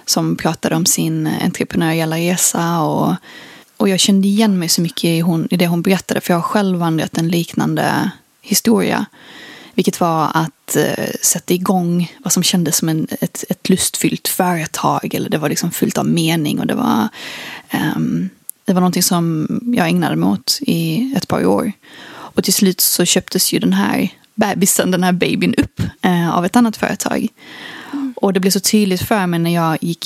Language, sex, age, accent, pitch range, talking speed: Swedish, female, 20-39, native, 170-210 Hz, 190 wpm